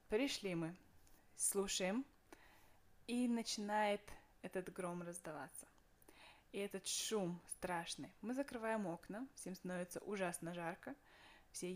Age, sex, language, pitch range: 20-39, female, Russian, 180-220 Hz